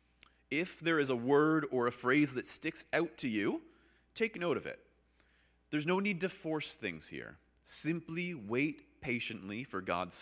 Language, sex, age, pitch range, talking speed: English, male, 30-49, 90-145 Hz, 170 wpm